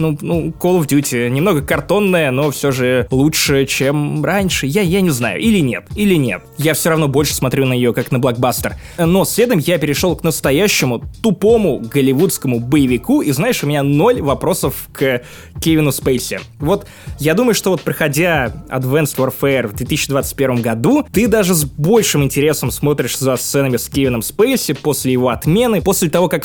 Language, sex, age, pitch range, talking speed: Russian, male, 20-39, 140-210 Hz, 175 wpm